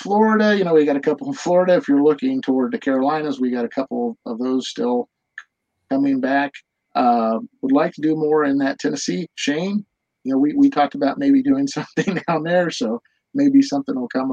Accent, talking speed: American, 210 wpm